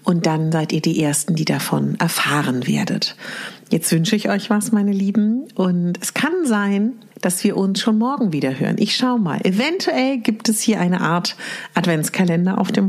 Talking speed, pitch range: 185 wpm, 175-240 Hz